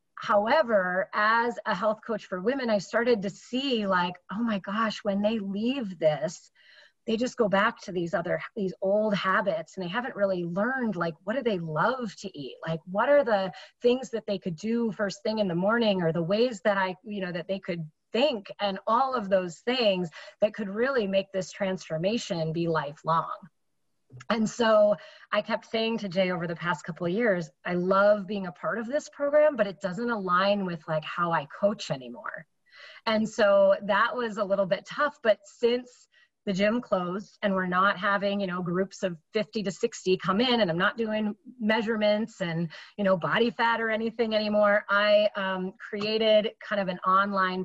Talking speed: 195 wpm